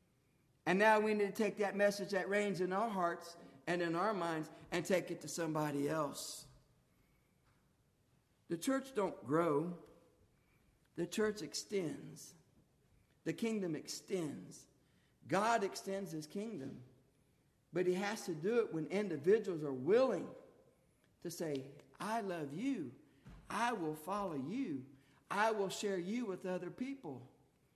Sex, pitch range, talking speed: male, 175-245 Hz, 135 wpm